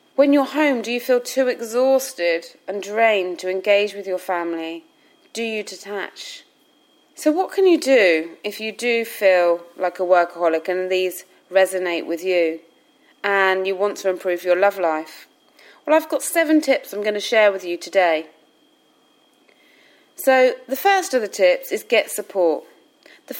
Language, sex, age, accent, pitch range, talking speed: English, female, 30-49, British, 185-260 Hz, 165 wpm